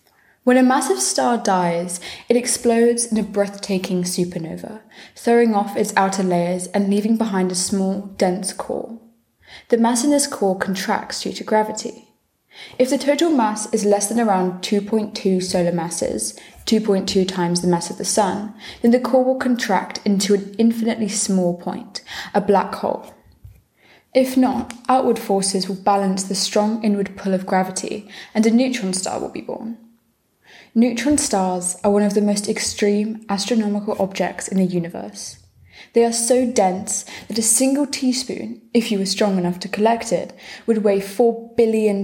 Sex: female